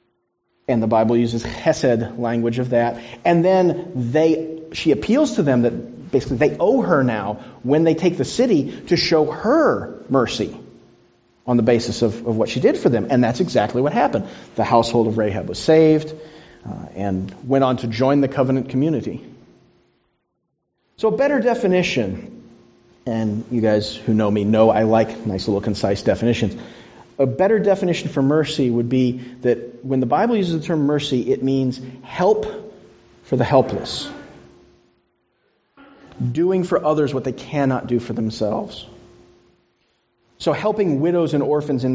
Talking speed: 160 wpm